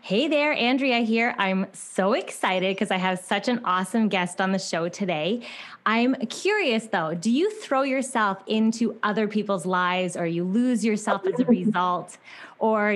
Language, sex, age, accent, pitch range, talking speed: English, female, 20-39, American, 190-250 Hz, 170 wpm